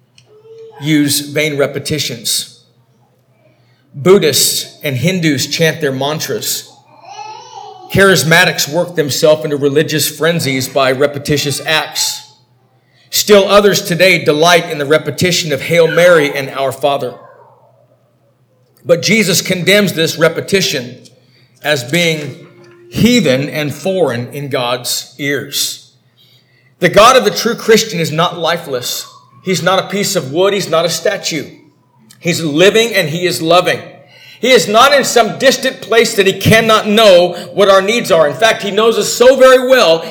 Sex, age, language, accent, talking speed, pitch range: male, 50-69, English, American, 140 wpm, 150-215 Hz